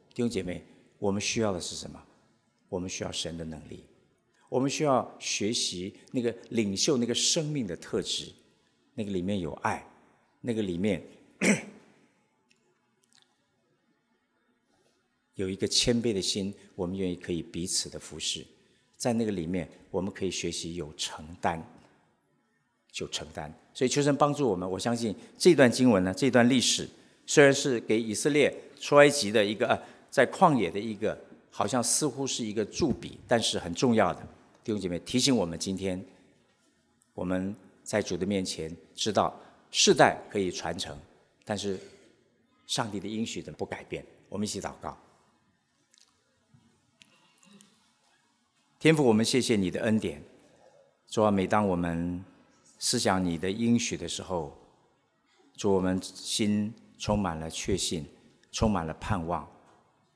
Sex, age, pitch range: male, 50-69, 90-120 Hz